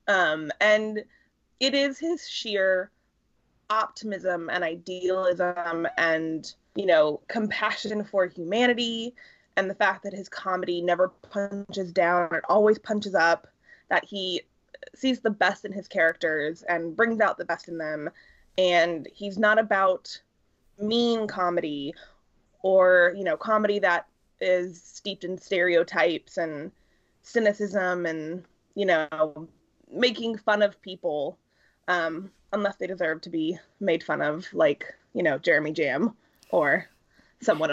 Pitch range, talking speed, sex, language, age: 170-215 Hz, 130 wpm, female, English, 20-39